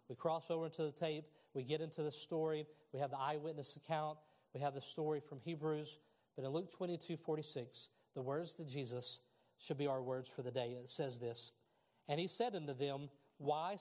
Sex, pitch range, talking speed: male, 125-150 Hz, 200 wpm